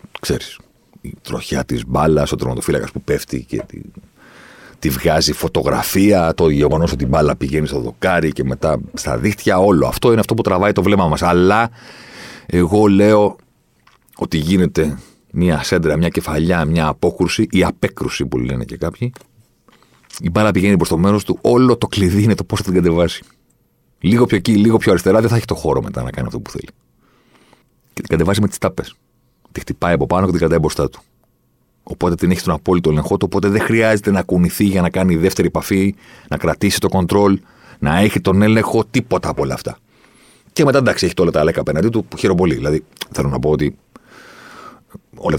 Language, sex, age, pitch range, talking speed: Greek, male, 40-59, 80-110 Hz, 195 wpm